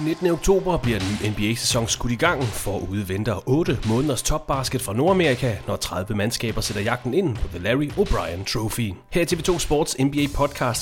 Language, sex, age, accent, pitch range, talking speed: English, male, 30-49, Danish, 105-150 Hz, 190 wpm